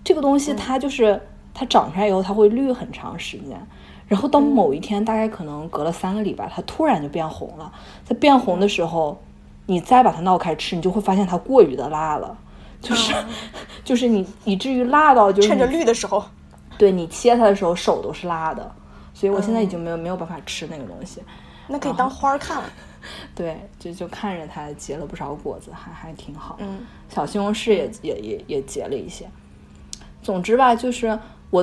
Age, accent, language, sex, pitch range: 20-39, native, Chinese, female, 170-235 Hz